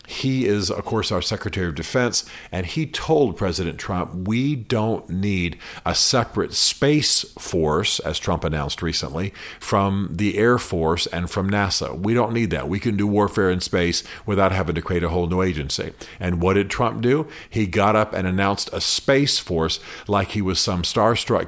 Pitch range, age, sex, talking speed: 90-110 Hz, 50-69, male, 185 wpm